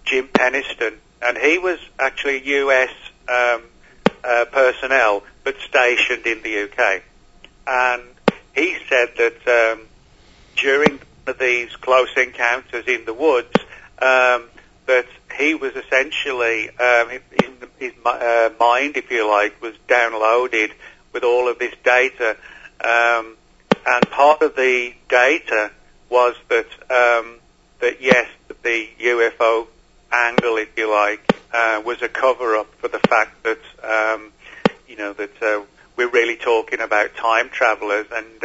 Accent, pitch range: British, 115-125 Hz